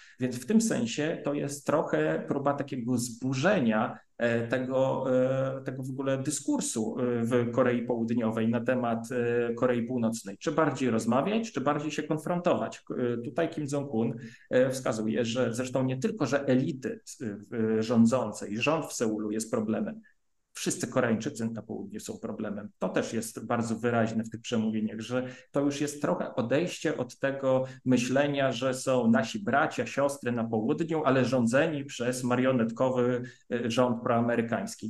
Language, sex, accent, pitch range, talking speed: Polish, male, native, 115-145 Hz, 140 wpm